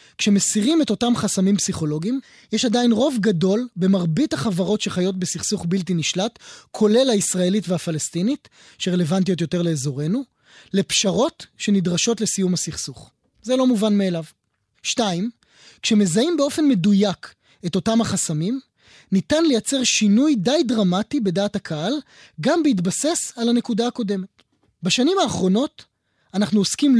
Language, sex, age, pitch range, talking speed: Hebrew, male, 20-39, 185-255 Hz, 115 wpm